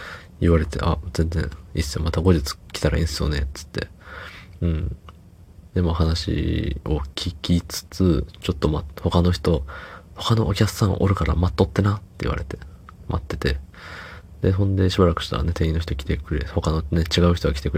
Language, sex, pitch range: Japanese, male, 85-95 Hz